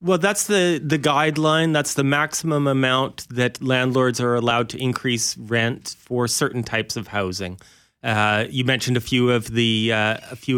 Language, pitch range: English, 120-145 Hz